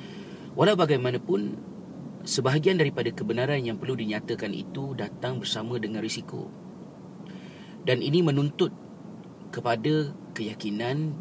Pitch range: 115-175 Hz